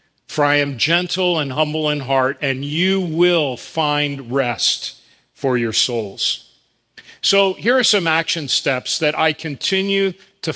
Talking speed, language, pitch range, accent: 150 wpm, English, 140-170 Hz, American